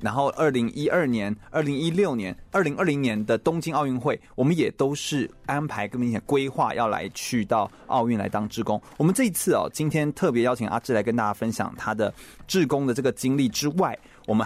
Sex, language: male, Chinese